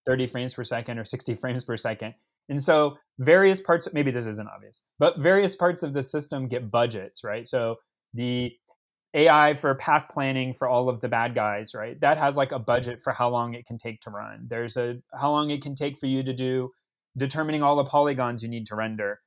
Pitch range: 125-150 Hz